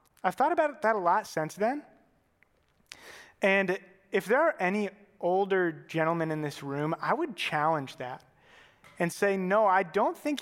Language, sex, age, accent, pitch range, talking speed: English, male, 30-49, American, 170-245 Hz, 160 wpm